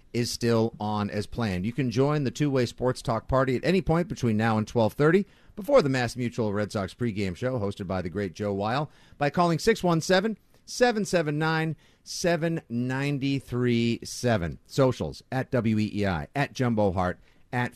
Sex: male